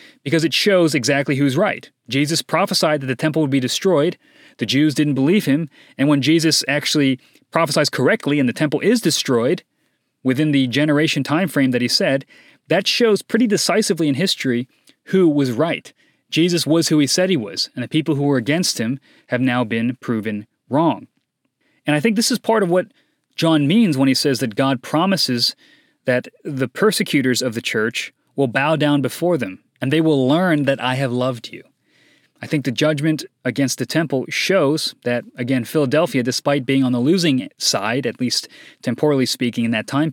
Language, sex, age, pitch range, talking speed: English, male, 30-49, 130-165 Hz, 190 wpm